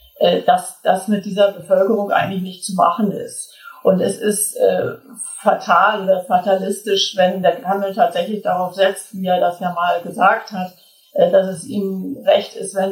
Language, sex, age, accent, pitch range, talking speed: German, female, 50-69, German, 180-205 Hz, 170 wpm